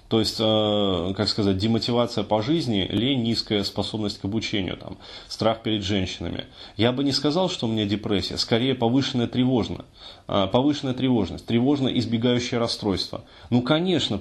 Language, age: Russian, 20-39